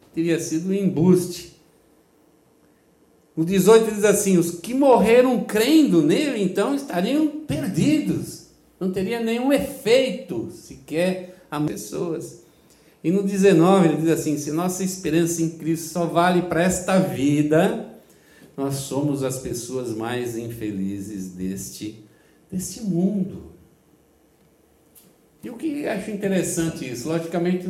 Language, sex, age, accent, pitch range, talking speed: Portuguese, male, 60-79, Brazilian, 155-210 Hz, 125 wpm